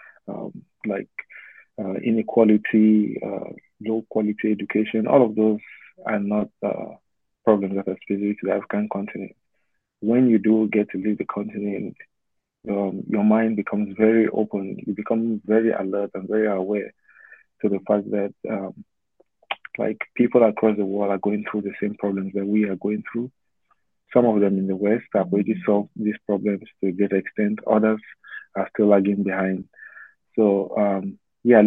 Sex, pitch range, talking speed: male, 100-110 Hz, 165 wpm